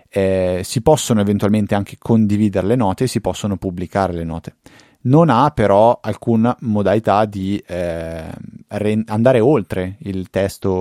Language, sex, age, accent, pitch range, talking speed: Italian, male, 20-39, native, 90-105 Hz, 145 wpm